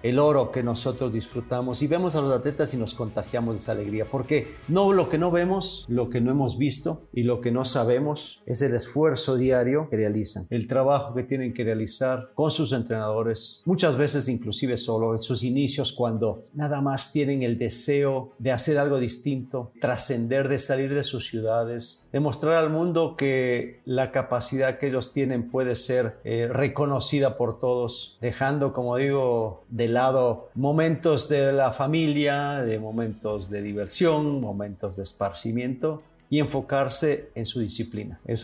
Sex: male